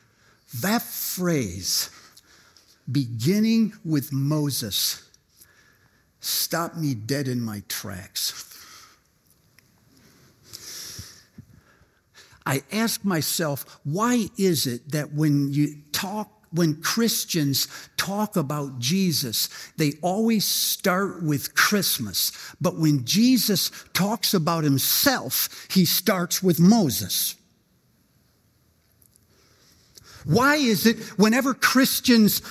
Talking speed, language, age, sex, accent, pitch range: 85 wpm, English, 60-79, male, American, 145-235 Hz